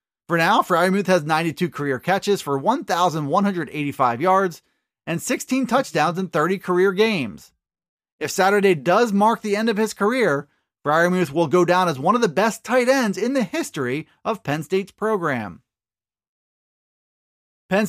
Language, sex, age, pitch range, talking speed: English, male, 30-49, 170-225 Hz, 150 wpm